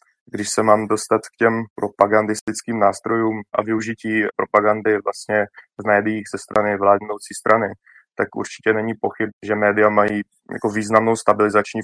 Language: Slovak